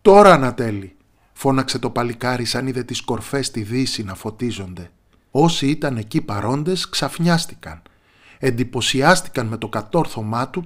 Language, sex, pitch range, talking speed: Greek, male, 100-140 Hz, 130 wpm